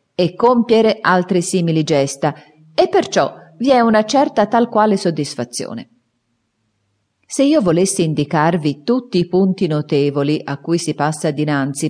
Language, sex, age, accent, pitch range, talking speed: Italian, female, 40-59, native, 155-220 Hz, 135 wpm